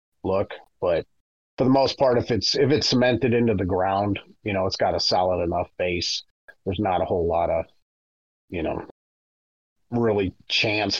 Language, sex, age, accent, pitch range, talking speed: English, male, 30-49, American, 95-125 Hz, 175 wpm